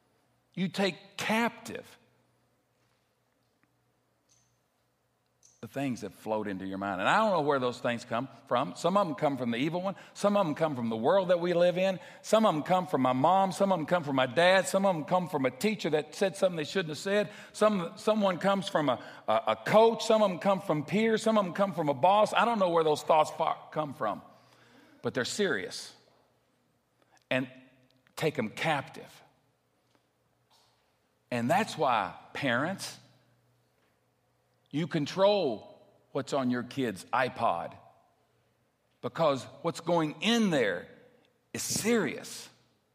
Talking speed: 170 wpm